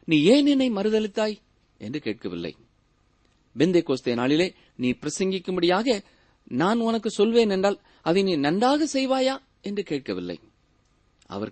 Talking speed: 90 wpm